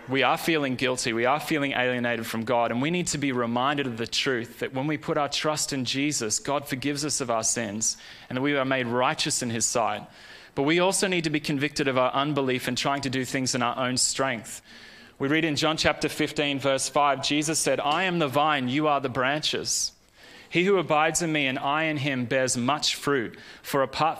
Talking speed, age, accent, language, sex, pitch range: 230 wpm, 20-39, Australian, English, male, 130-155 Hz